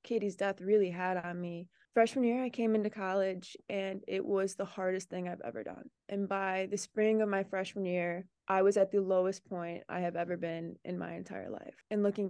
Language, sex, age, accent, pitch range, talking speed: English, female, 20-39, American, 185-215 Hz, 220 wpm